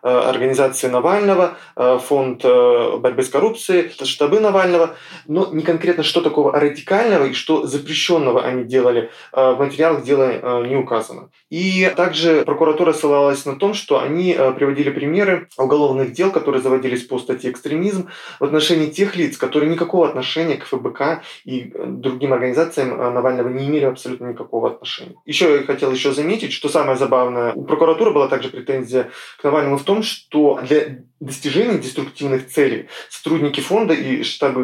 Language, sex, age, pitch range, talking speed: Russian, male, 20-39, 135-165 Hz, 150 wpm